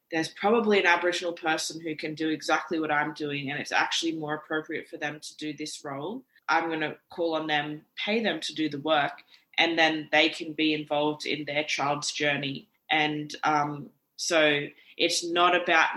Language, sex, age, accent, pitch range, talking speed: English, female, 20-39, Australian, 155-170 Hz, 190 wpm